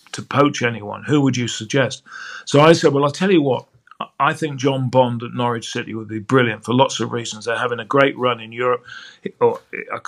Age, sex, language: 50-69, male, English